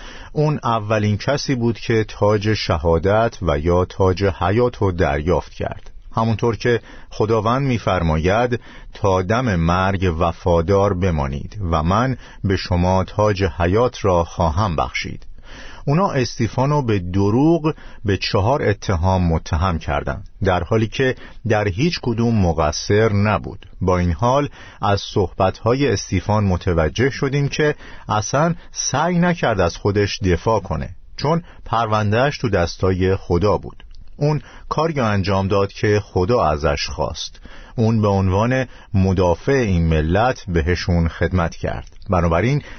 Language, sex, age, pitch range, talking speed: Persian, male, 50-69, 90-120 Hz, 125 wpm